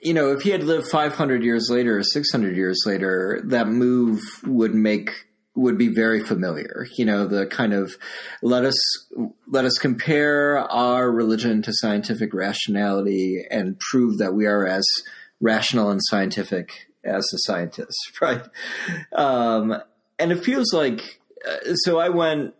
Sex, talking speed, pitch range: male, 150 wpm, 100-130 Hz